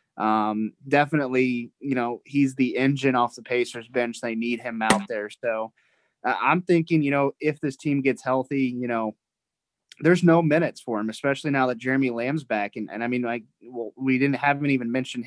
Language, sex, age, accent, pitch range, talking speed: English, male, 20-39, American, 115-135 Hz, 205 wpm